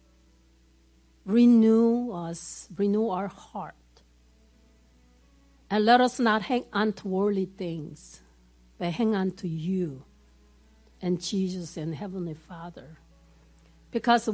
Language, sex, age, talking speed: English, female, 50-69, 105 wpm